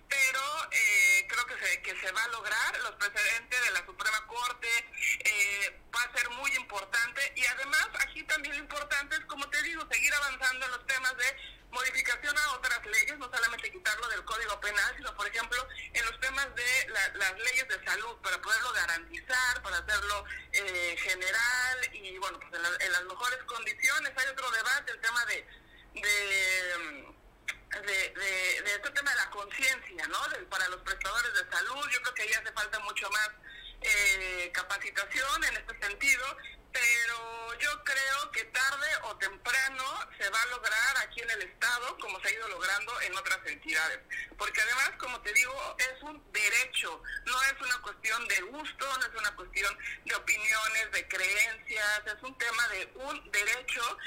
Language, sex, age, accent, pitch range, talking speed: Spanish, male, 50-69, Mexican, 205-275 Hz, 180 wpm